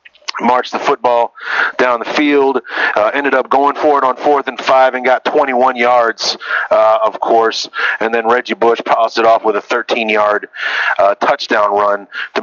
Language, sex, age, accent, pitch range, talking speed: English, male, 30-49, American, 110-145 Hz, 180 wpm